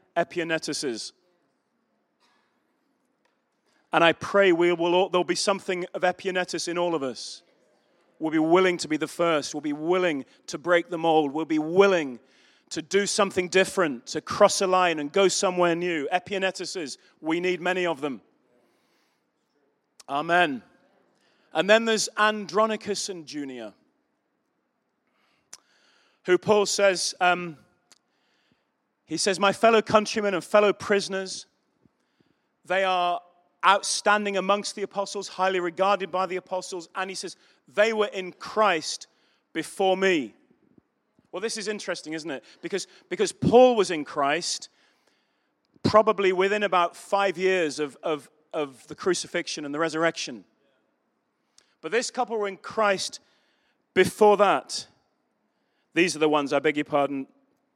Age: 30-49